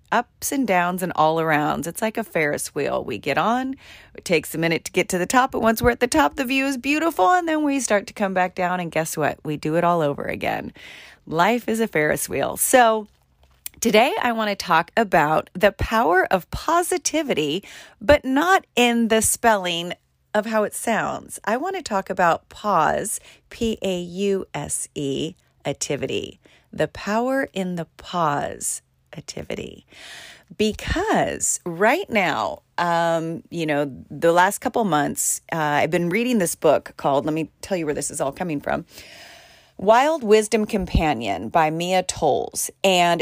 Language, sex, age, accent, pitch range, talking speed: English, female, 40-59, American, 165-225 Hz, 170 wpm